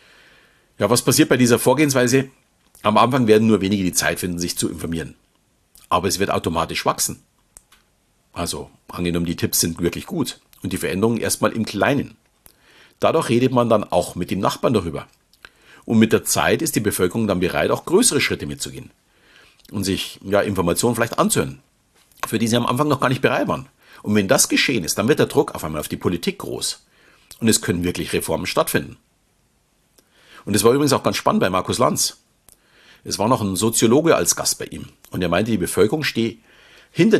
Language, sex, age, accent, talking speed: German, male, 50-69, German, 195 wpm